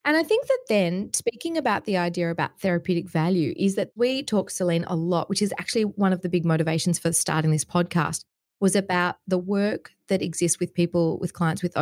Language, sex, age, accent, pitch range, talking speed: English, female, 30-49, Australian, 170-200 Hz, 215 wpm